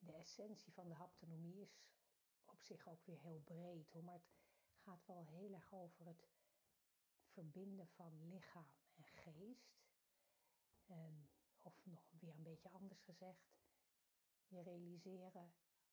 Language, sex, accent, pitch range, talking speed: Dutch, female, Dutch, 170-190 Hz, 130 wpm